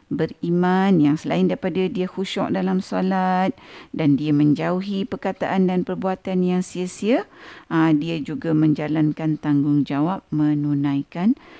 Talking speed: 110 wpm